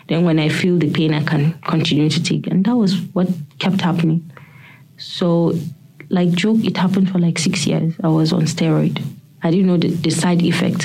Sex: female